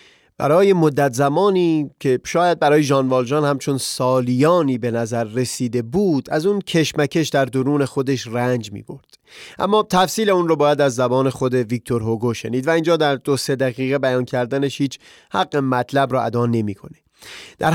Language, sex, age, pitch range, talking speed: Persian, male, 30-49, 125-150 Hz, 165 wpm